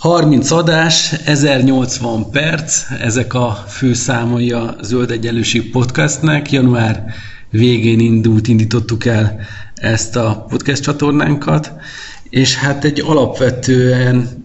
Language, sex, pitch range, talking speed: Hungarian, male, 105-125 Hz, 105 wpm